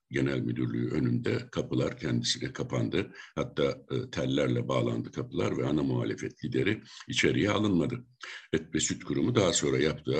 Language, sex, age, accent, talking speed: Turkish, male, 60-79, native, 135 wpm